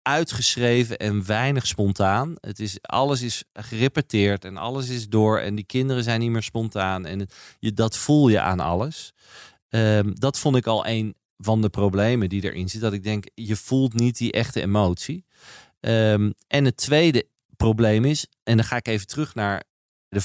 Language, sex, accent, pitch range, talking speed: Dutch, male, Dutch, 100-125 Hz, 170 wpm